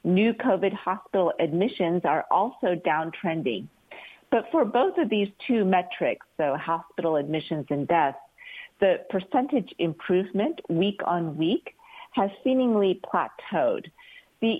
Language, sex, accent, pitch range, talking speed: English, female, American, 160-215 Hz, 120 wpm